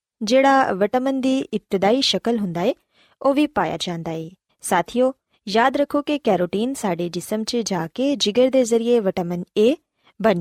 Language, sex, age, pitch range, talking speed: Punjabi, female, 20-39, 185-265 Hz, 160 wpm